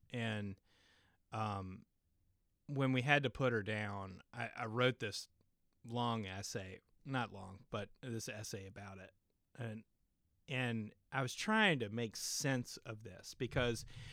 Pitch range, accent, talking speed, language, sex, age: 100-125 Hz, American, 140 wpm, English, male, 30-49